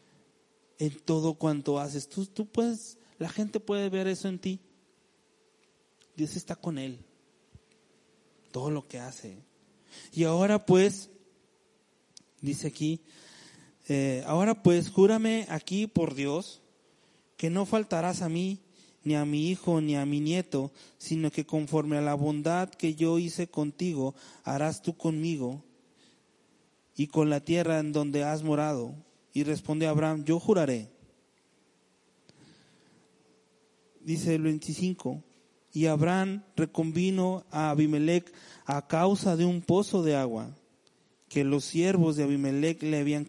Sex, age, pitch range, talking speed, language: male, 30-49, 145-175 Hz, 130 wpm, Spanish